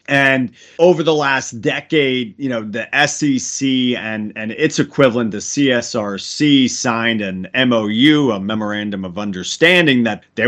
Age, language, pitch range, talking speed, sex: 40-59, English, 105-140 Hz, 135 wpm, male